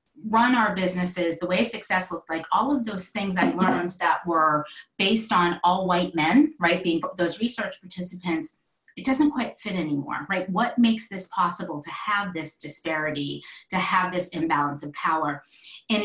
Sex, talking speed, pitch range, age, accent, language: female, 175 wpm, 165-220 Hz, 30-49, American, English